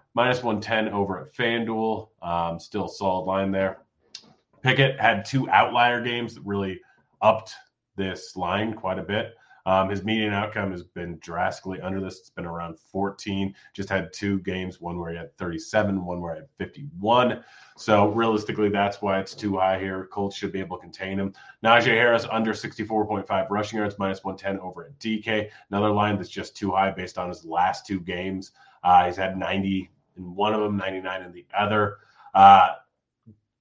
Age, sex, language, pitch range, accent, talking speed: 30-49, male, English, 95-110 Hz, American, 180 wpm